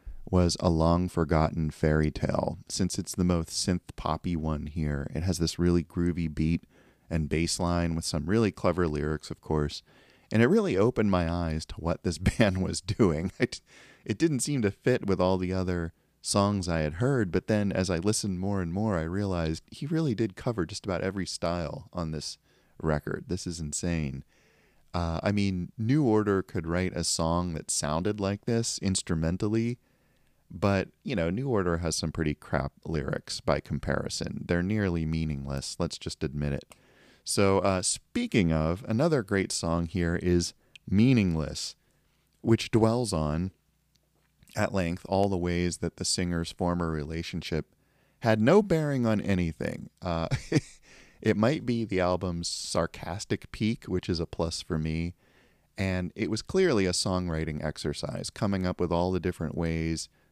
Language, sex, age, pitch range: English, male, 30-49, 80-105 Hz